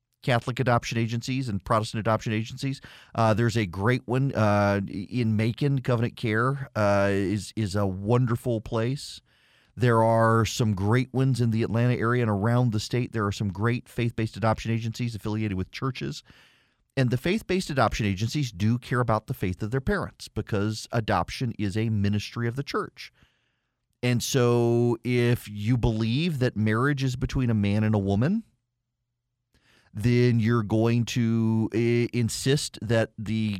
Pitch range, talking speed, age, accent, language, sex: 110-125 Hz, 160 wpm, 40-59, American, English, male